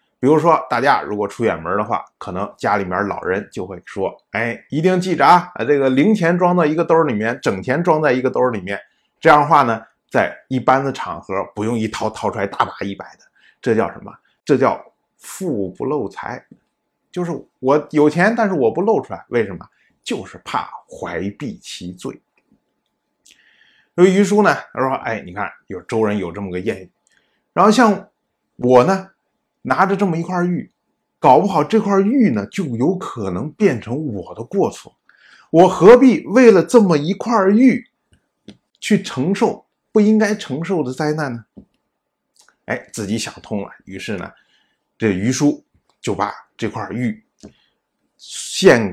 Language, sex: Chinese, male